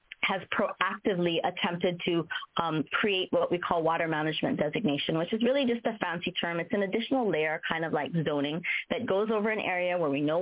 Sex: female